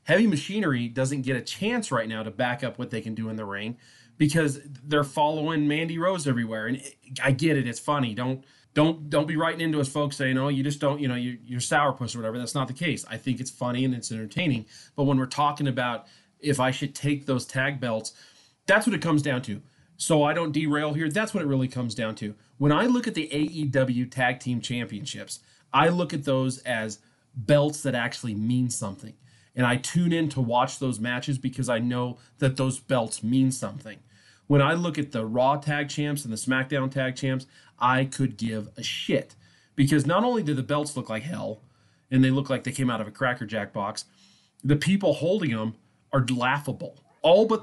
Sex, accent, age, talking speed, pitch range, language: male, American, 30-49, 215 wpm, 120-145 Hz, English